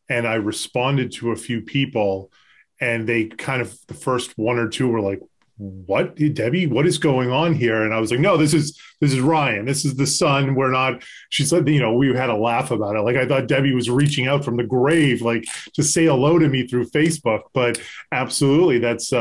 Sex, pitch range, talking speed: male, 110-135 Hz, 230 wpm